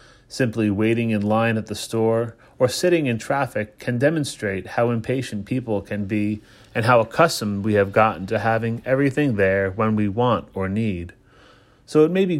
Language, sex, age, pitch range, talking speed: English, male, 30-49, 105-130 Hz, 180 wpm